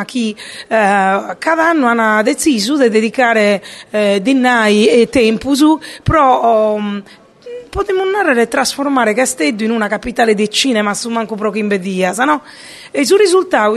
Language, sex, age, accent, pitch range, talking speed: Italian, female, 30-49, native, 210-265 Hz, 135 wpm